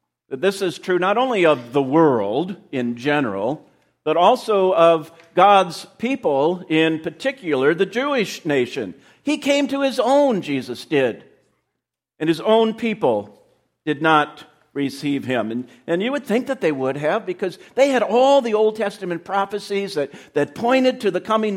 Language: English